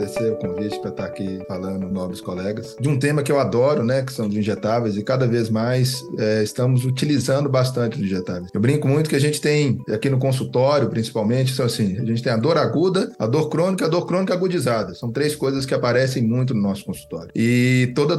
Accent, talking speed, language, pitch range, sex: Brazilian, 220 wpm, Portuguese, 120-145 Hz, male